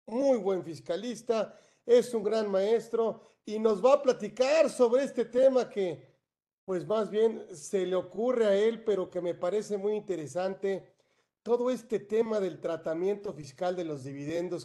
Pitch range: 170-220 Hz